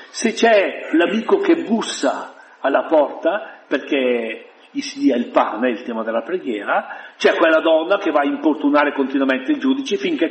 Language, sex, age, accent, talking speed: Italian, male, 60-79, native, 165 wpm